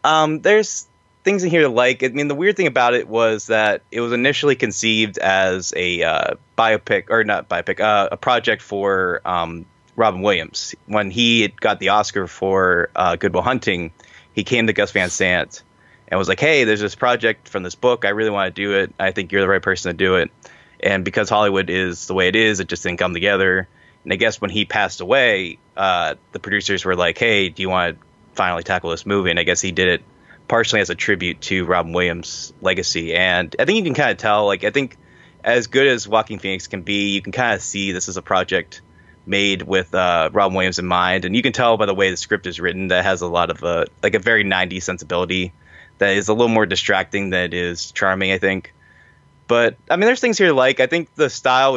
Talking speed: 235 wpm